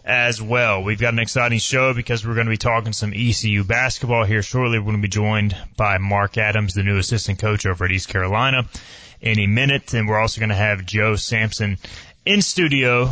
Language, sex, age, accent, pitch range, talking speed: English, male, 20-39, American, 100-120 Hz, 210 wpm